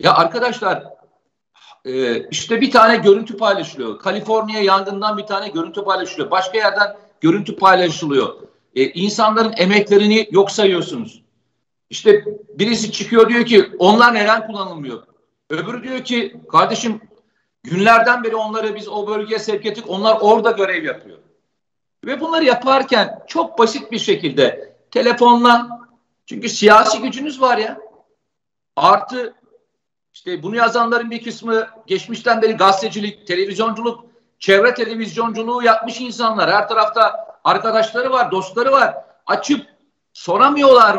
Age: 50-69